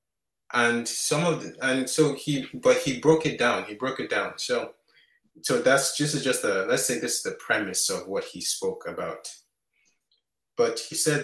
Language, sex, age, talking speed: English, male, 30-49, 190 wpm